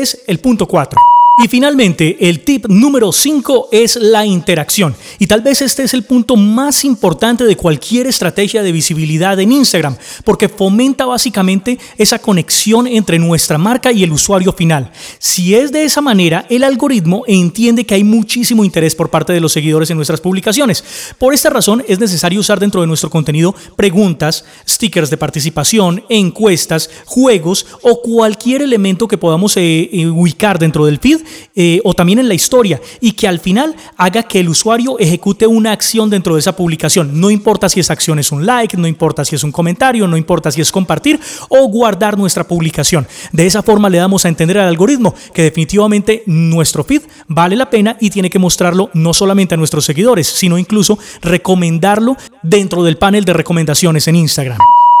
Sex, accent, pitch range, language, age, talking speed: male, Colombian, 170-230 Hz, Spanish, 30-49, 180 wpm